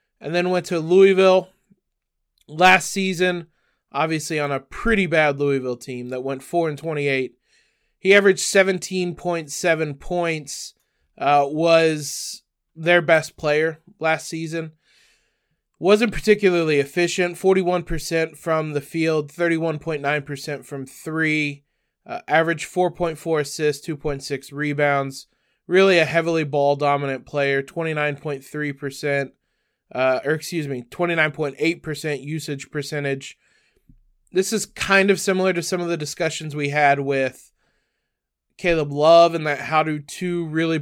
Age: 20-39